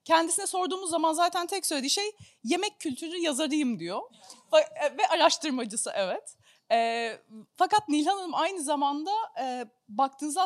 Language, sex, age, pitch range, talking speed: Turkish, female, 30-49, 245-320 Hz, 125 wpm